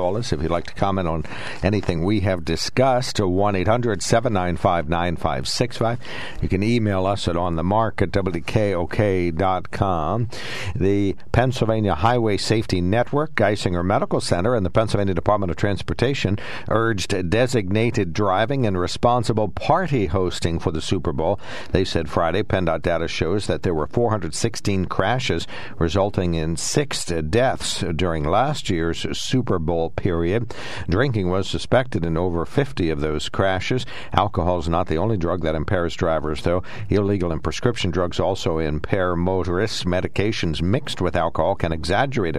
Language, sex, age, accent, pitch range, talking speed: English, male, 60-79, American, 85-110 Hz, 135 wpm